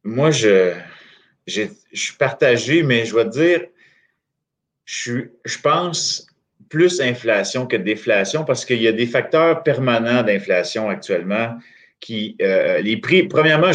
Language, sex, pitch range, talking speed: French, male, 110-145 Hz, 135 wpm